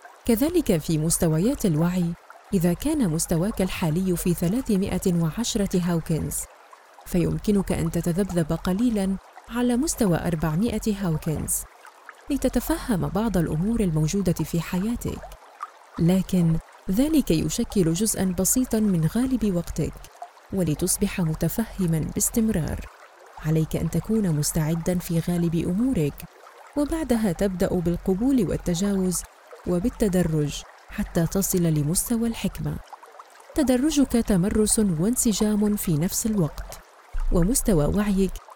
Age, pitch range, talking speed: 30-49, 170-220 Hz, 95 wpm